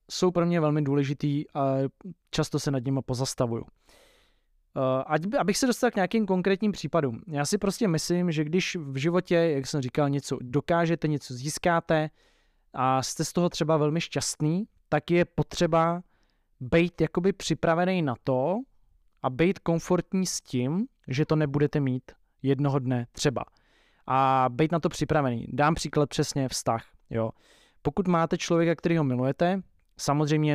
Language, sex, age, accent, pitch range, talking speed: Czech, male, 20-39, native, 130-165 Hz, 150 wpm